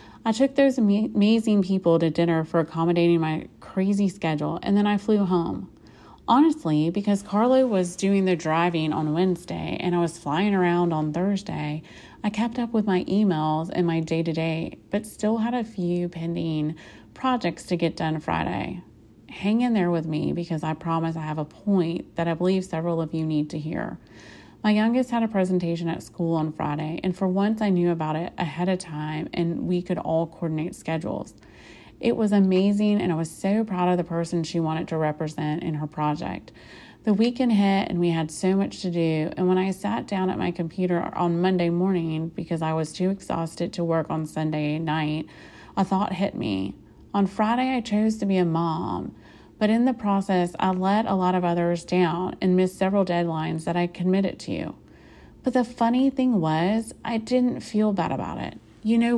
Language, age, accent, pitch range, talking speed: English, 30-49, American, 165-205 Hz, 195 wpm